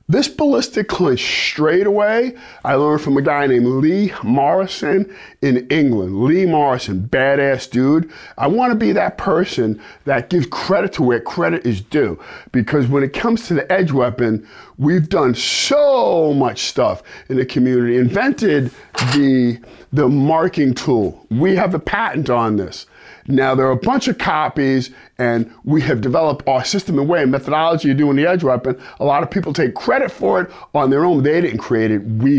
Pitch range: 130-205 Hz